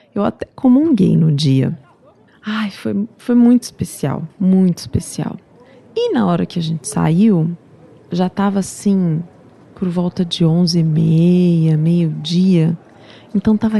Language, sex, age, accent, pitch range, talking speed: Portuguese, female, 30-49, Brazilian, 170-215 Hz, 140 wpm